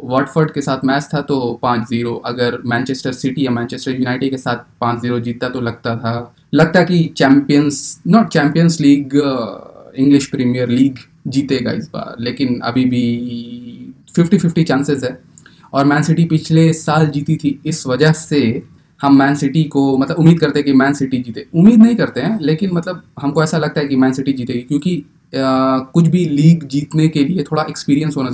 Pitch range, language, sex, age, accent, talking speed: 125-145 Hz, Hindi, male, 20-39, native, 185 wpm